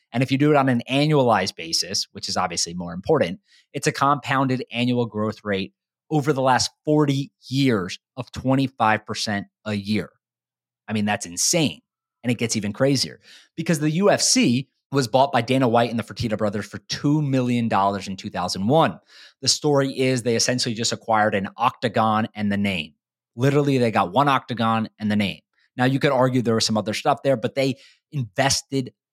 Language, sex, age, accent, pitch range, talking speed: English, male, 30-49, American, 110-135 Hz, 180 wpm